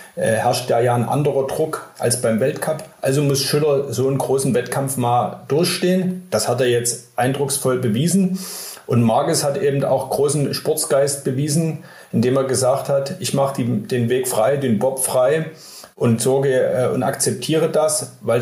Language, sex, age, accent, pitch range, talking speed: German, male, 40-59, German, 125-150 Hz, 170 wpm